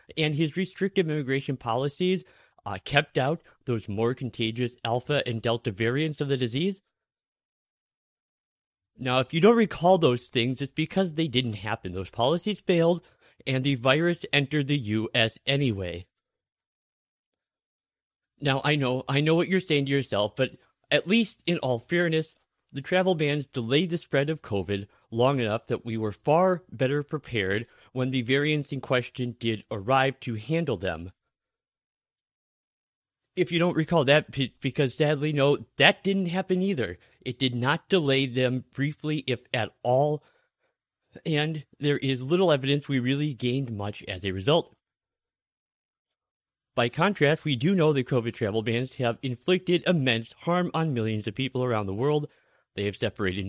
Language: English